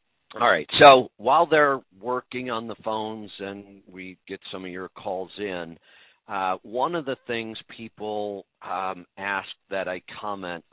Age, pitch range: 50-69, 90-110 Hz